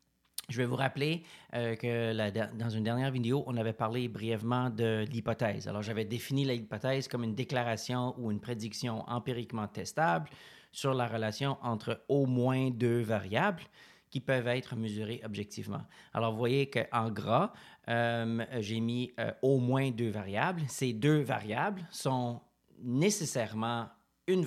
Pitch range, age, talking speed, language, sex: 115-145 Hz, 30-49, 150 wpm, French, male